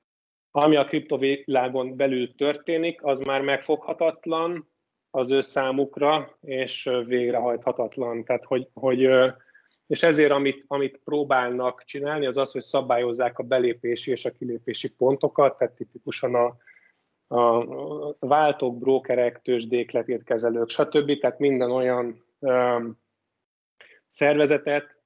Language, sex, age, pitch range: Hungarian, male, 30-49, 125-145 Hz